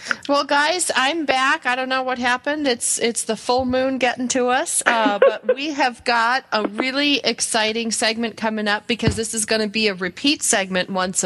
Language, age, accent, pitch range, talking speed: English, 40-59, American, 205-245 Hz, 205 wpm